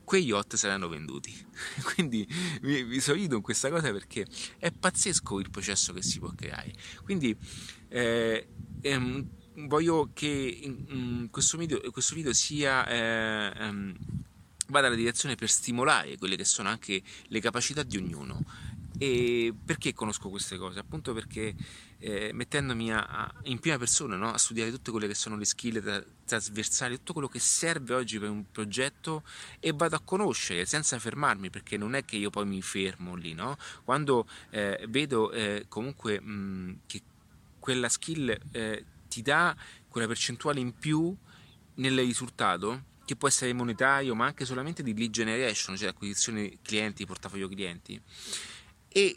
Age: 30-49